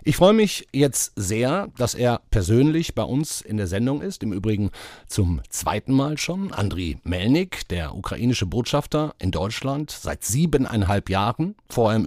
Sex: male